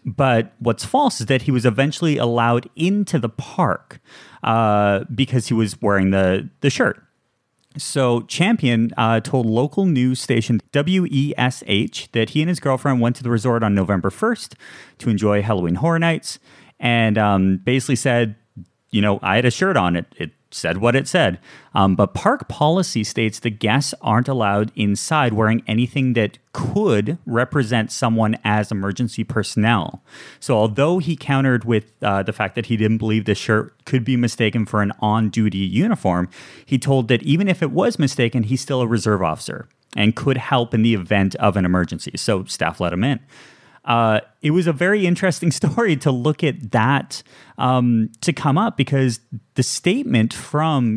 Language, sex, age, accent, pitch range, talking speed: English, male, 30-49, American, 110-135 Hz, 175 wpm